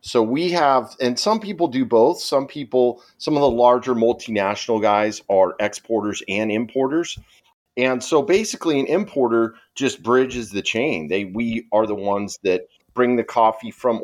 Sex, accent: male, American